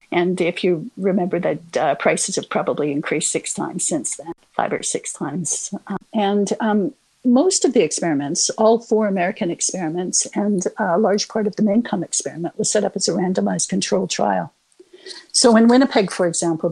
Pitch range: 170-215 Hz